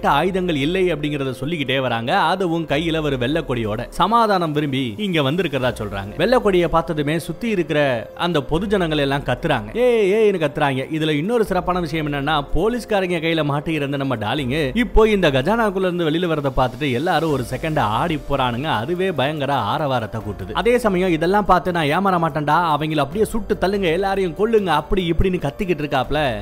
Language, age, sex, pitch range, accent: Tamil, 30-49, male, 140-190 Hz, native